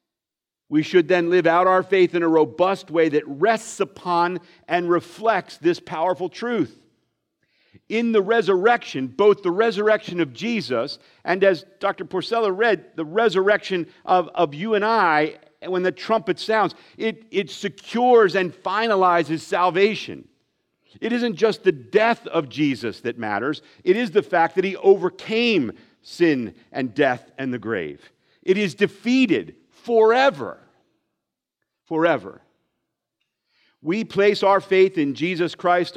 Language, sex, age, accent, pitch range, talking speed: English, male, 50-69, American, 160-205 Hz, 140 wpm